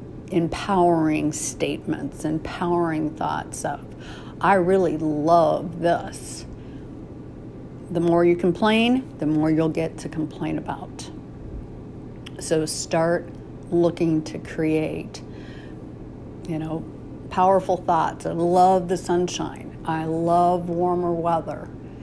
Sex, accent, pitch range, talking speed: female, American, 150-175 Hz, 100 wpm